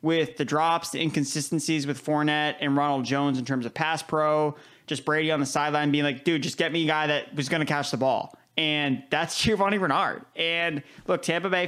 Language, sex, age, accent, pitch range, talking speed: English, male, 20-39, American, 140-160 Hz, 220 wpm